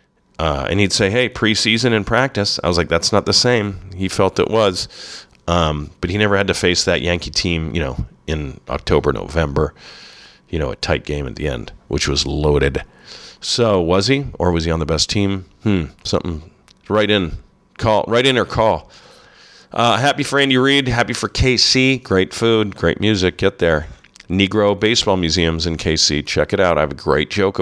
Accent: American